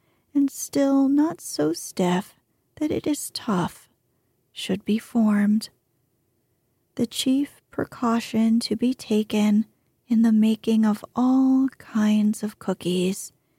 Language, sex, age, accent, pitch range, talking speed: English, female, 40-59, American, 200-255 Hz, 115 wpm